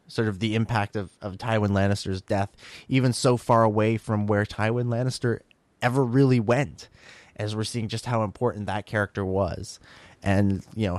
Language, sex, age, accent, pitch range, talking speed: English, male, 20-39, American, 105-130 Hz, 175 wpm